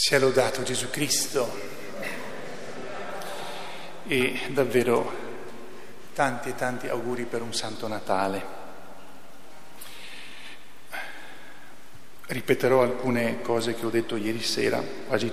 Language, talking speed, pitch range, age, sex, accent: Italian, 90 wpm, 115-135 Hz, 50-69, male, native